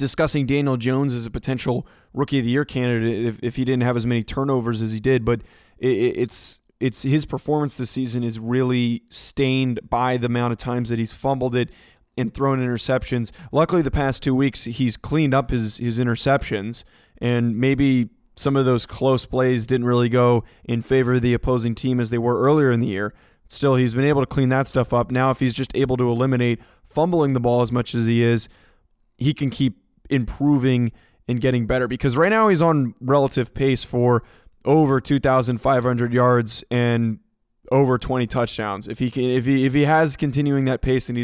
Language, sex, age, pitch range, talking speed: English, male, 20-39, 120-135 Hz, 200 wpm